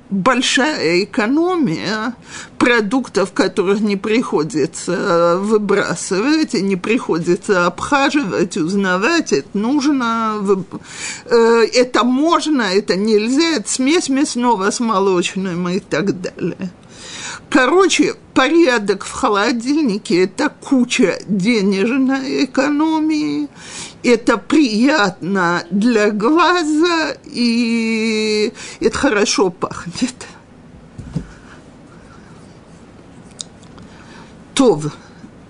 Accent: native